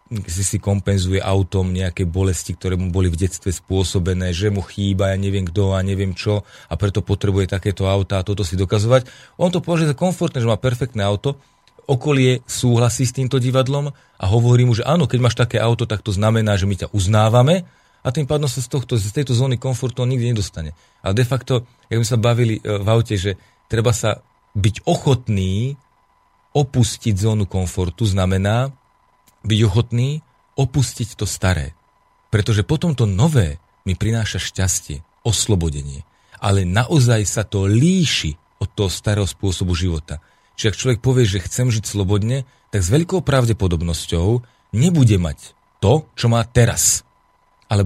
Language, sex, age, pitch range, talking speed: Slovak, male, 40-59, 95-125 Hz, 165 wpm